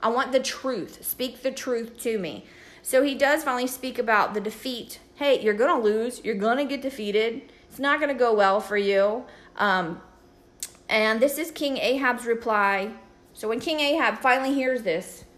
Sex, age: female, 30-49